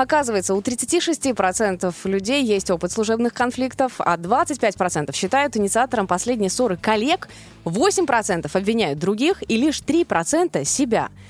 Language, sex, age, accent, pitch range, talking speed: Russian, female, 20-39, native, 185-265 Hz, 115 wpm